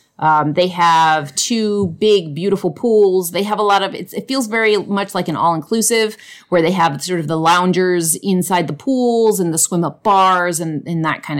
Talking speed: 210 wpm